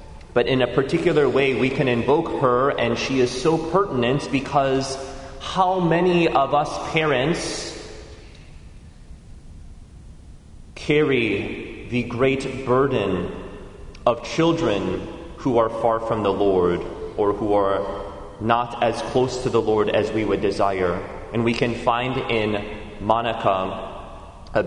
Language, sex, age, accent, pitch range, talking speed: English, male, 30-49, American, 100-150 Hz, 125 wpm